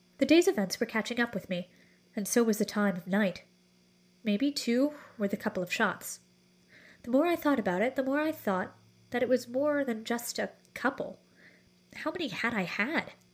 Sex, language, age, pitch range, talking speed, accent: female, English, 30-49, 175-235 Hz, 200 wpm, American